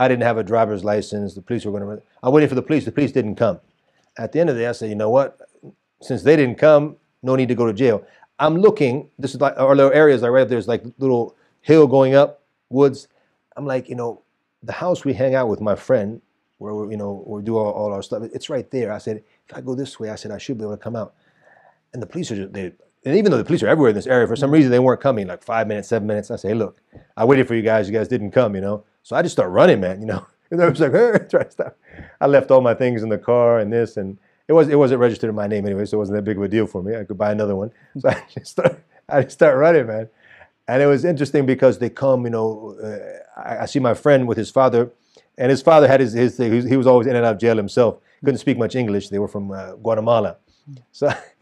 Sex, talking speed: male, 285 wpm